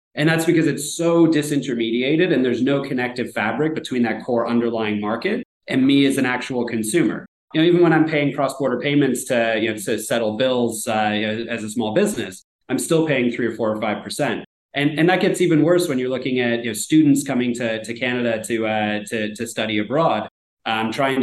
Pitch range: 115-145 Hz